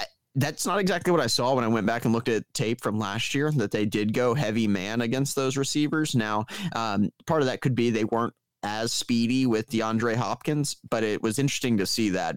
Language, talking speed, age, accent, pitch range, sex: English, 230 wpm, 20-39, American, 105-125 Hz, male